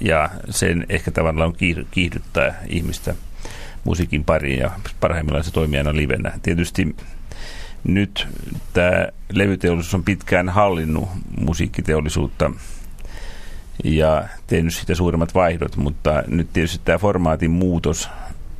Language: Finnish